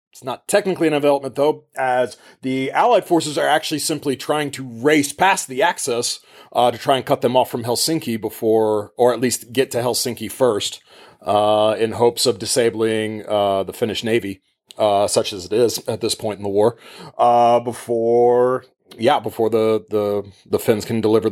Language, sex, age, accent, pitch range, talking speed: English, male, 30-49, American, 110-135 Hz, 185 wpm